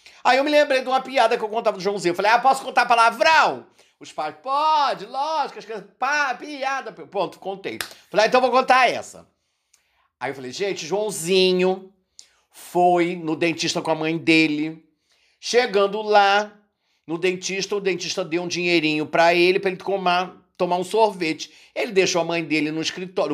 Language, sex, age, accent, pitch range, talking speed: Portuguese, male, 50-69, Brazilian, 165-215 Hz, 185 wpm